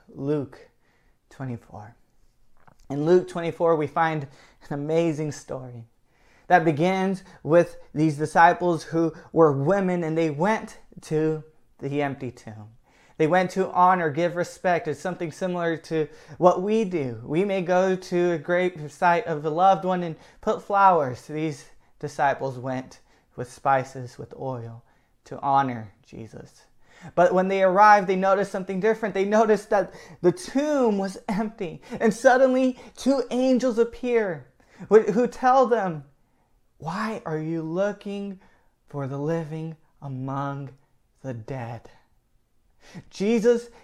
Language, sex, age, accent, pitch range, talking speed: English, male, 20-39, American, 150-215 Hz, 135 wpm